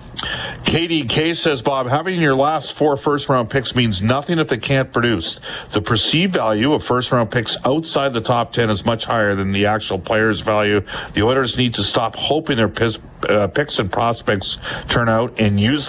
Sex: male